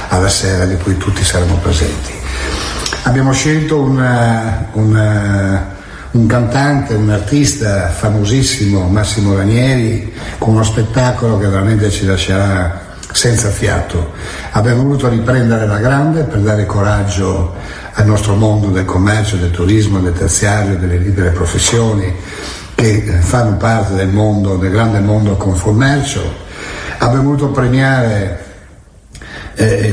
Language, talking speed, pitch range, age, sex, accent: Italian, 120 wpm, 95-115 Hz, 60-79, male, native